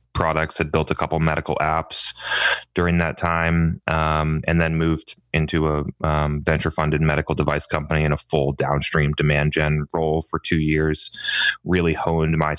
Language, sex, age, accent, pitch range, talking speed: English, male, 20-39, American, 75-85 Hz, 170 wpm